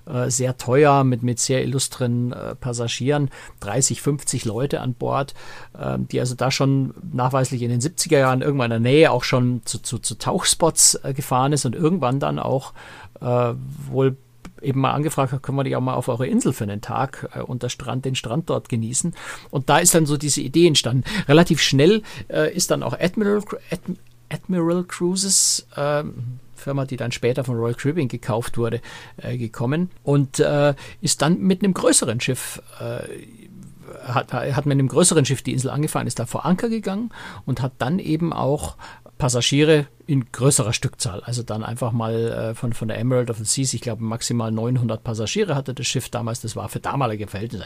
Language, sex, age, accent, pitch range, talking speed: German, male, 50-69, German, 120-150 Hz, 180 wpm